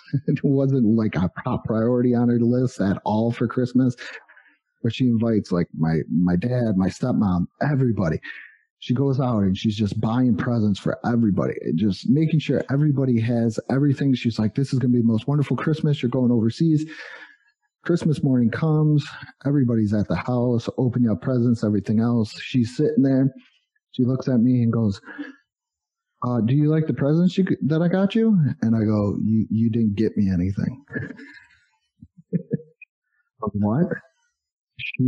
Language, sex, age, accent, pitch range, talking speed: English, male, 30-49, American, 115-145 Hz, 165 wpm